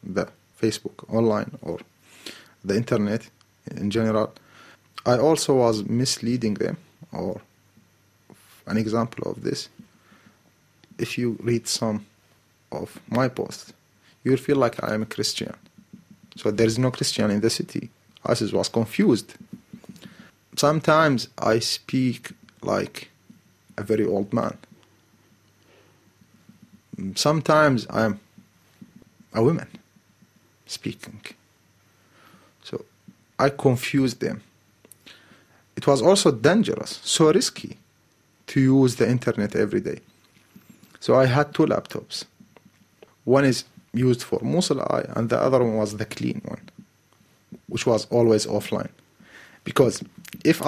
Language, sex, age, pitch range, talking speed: English, male, 30-49, 110-140 Hz, 120 wpm